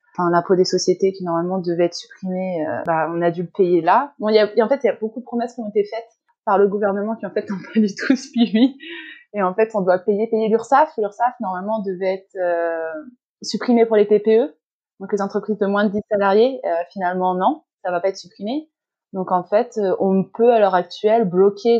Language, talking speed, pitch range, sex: French, 240 wpm, 190-230 Hz, female